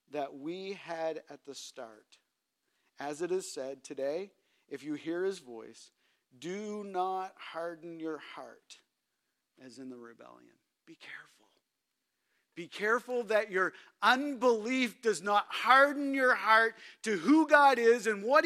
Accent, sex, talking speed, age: American, male, 140 wpm, 50-69